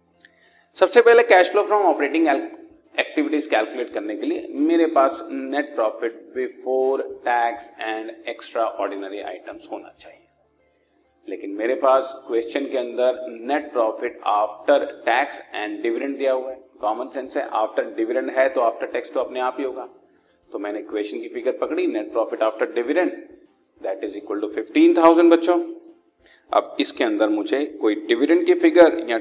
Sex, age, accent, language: male, 40-59, native, Hindi